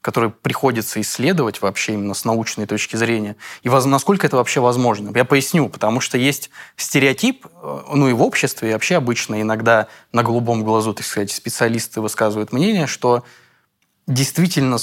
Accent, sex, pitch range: native, male, 110-140 Hz